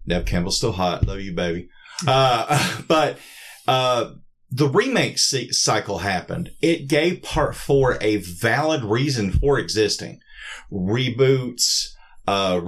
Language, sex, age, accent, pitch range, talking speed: English, male, 40-59, American, 105-140 Hz, 120 wpm